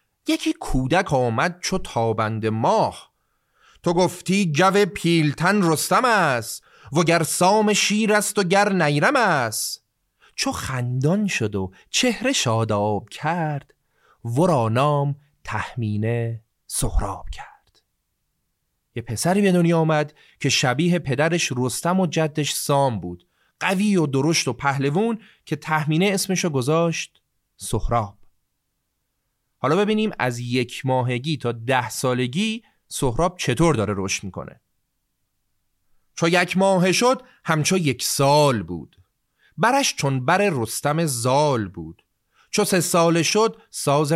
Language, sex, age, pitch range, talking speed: Persian, male, 30-49, 125-185 Hz, 120 wpm